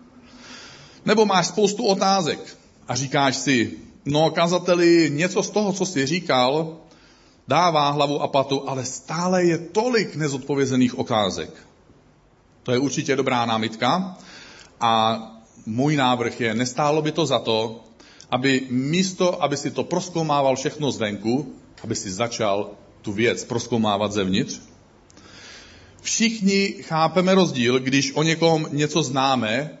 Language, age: Czech, 40-59